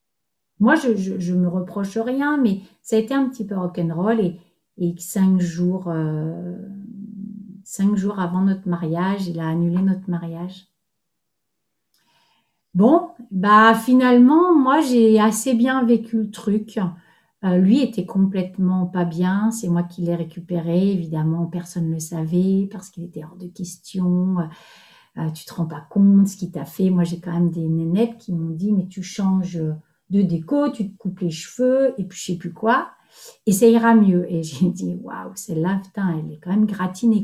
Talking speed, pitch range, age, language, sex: 180 wpm, 175-225 Hz, 50-69, French, female